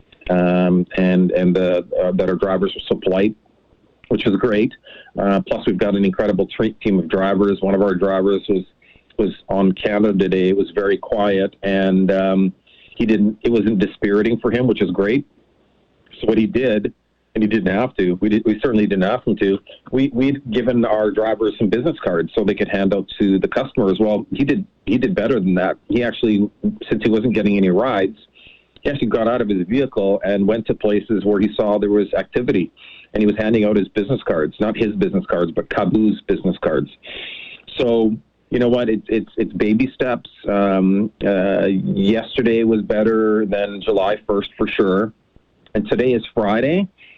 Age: 40-59